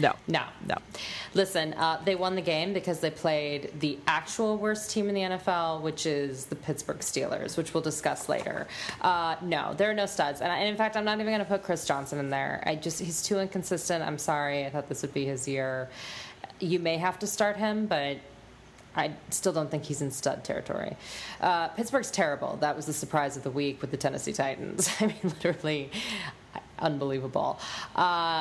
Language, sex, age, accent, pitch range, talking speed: English, female, 20-39, American, 155-215 Hz, 205 wpm